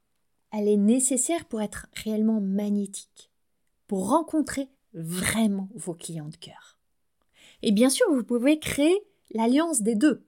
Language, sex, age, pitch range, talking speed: French, female, 30-49, 190-245 Hz, 135 wpm